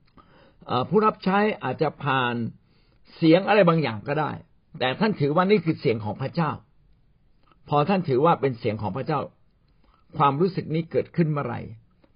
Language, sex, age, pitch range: Thai, male, 60-79, 110-160 Hz